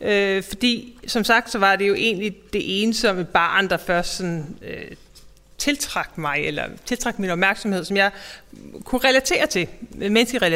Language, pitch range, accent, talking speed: Danish, 180-225 Hz, native, 170 wpm